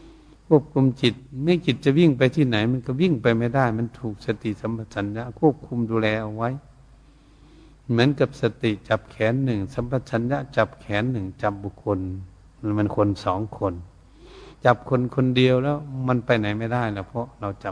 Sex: male